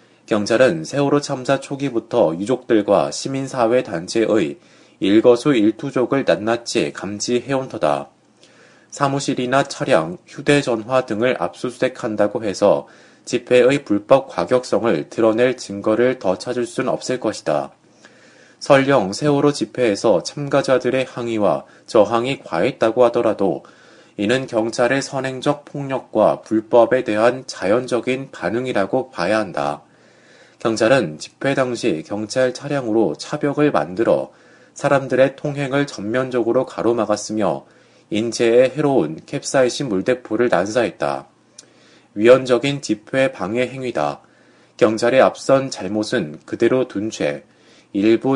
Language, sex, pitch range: Korean, male, 115-135 Hz